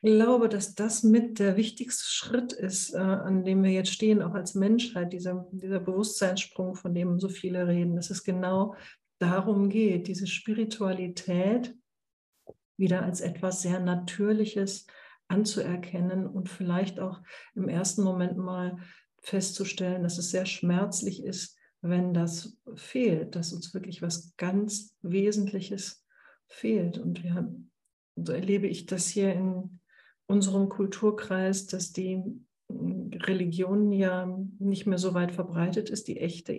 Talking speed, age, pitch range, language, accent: 140 wpm, 60-79, 180-205 Hz, German, German